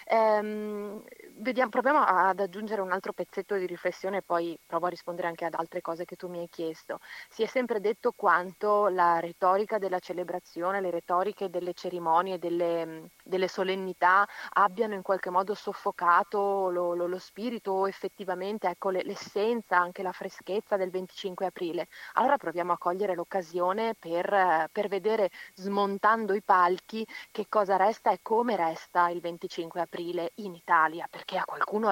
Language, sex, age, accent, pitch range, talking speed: Italian, female, 30-49, native, 175-205 Hz, 150 wpm